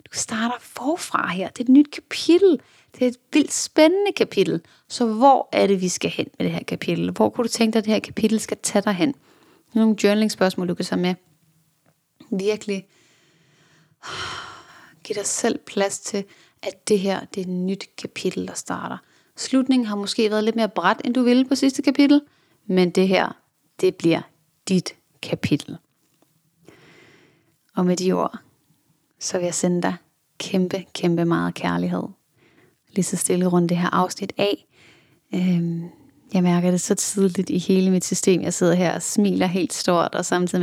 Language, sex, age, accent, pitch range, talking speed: English, female, 30-49, Danish, 180-225 Hz, 175 wpm